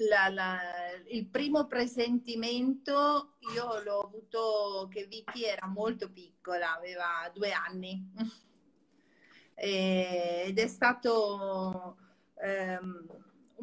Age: 40-59